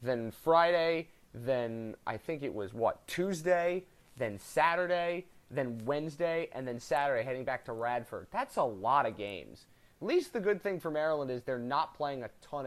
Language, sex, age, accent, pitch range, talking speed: English, male, 30-49, American, 120-170 Hz, 180 wpm